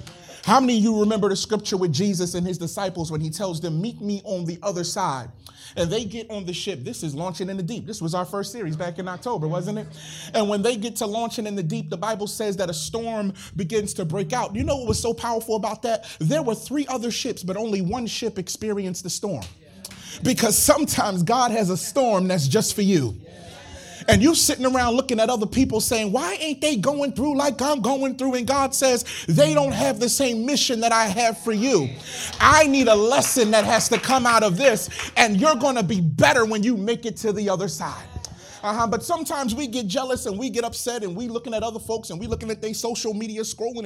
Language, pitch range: English, 190-255 Hz